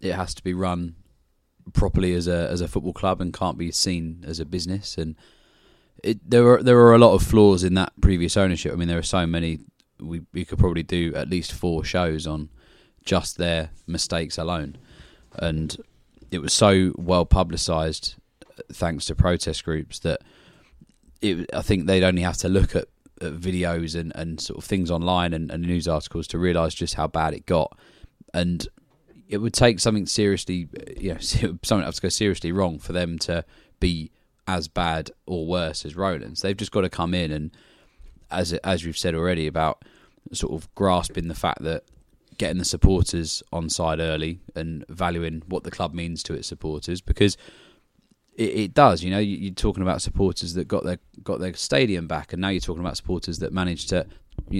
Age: 20-39